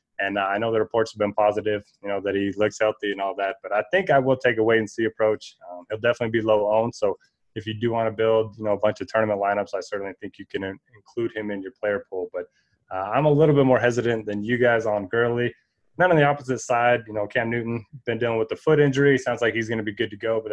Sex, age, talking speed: male, 20-39, 290 wpm